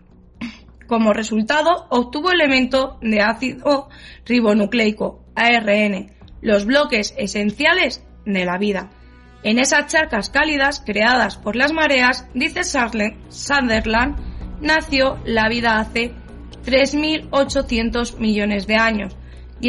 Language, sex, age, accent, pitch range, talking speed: Spanish, female, 20-39, Spanish, 225-295 Hz, 100 wpm